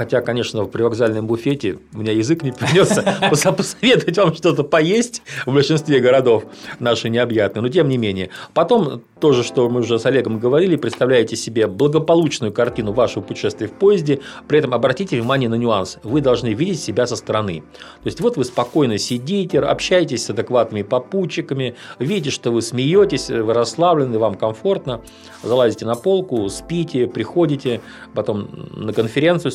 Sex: male